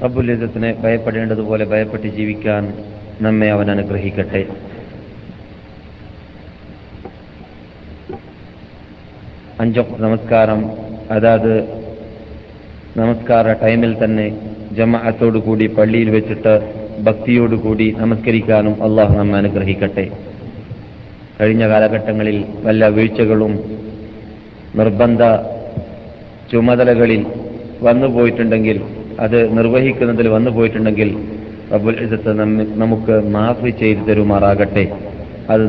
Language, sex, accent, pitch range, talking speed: Malayalam, male, native, 105-115 Hz, 65 wpm